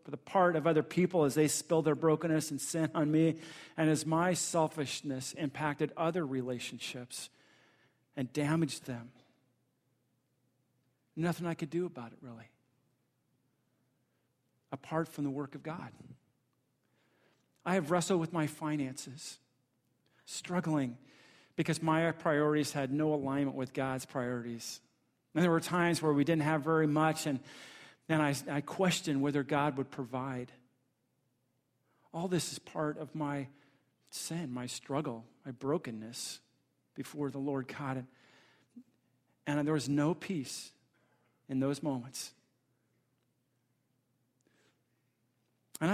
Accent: American